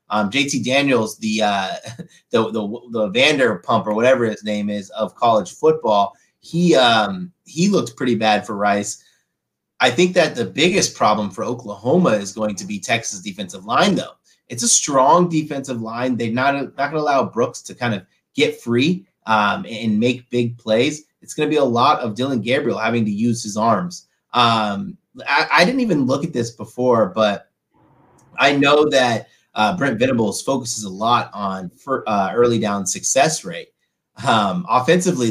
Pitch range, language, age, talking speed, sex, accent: 110-145 Hz, English, 30-49, 180 wpm, male, American